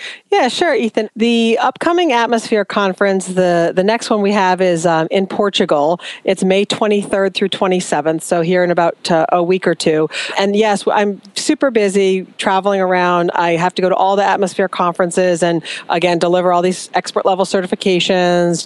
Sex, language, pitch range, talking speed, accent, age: female, English, 175-210 Hz, 175 wpm, American, 40-59